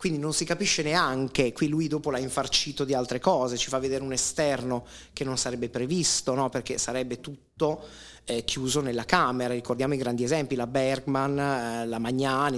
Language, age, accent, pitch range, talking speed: Italian, 30-49, native, 125-150 Hz, 180 wpm